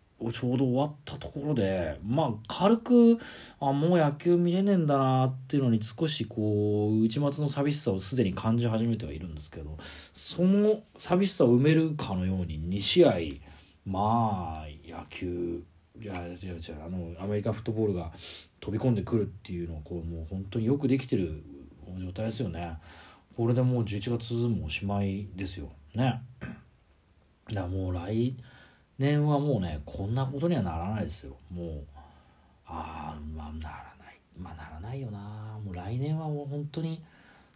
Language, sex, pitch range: Japanese, male, 85-135 Hz